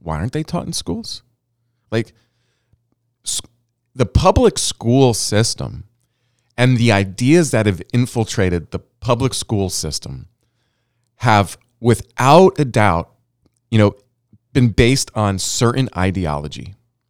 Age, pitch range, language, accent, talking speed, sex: 40-59, 95-120 Hz, English, American, 110 wpm, male